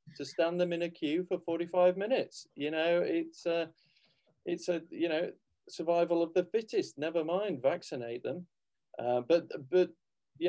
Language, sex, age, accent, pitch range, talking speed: English, male, 40-59, British, 130-175 Hz, 165 wpm